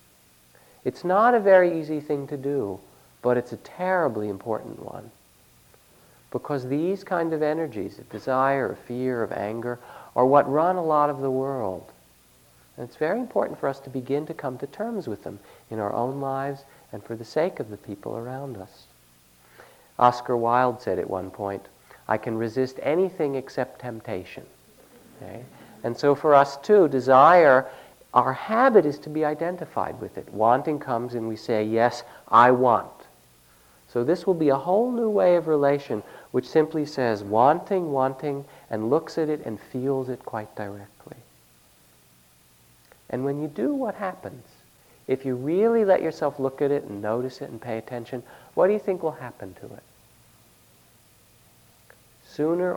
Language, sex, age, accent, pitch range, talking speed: English, male, 50-69, American, 105-150 Hz, 170 wpm